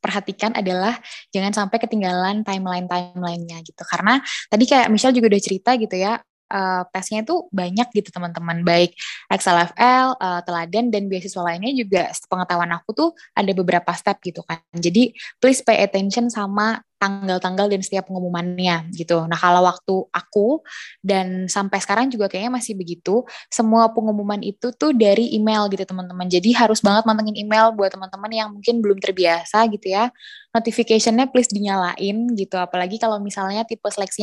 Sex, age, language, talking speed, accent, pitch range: female, 20-39, Indonesian, 155 wpm, native, 190-225 Hz